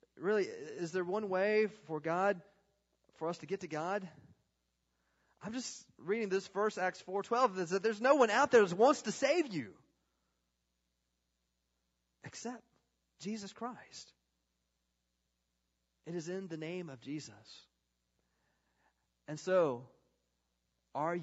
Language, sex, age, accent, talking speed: English, male, 40-59, American, 130 wpm